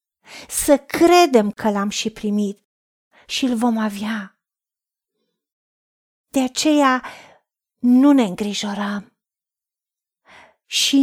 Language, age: Romanian, 40-59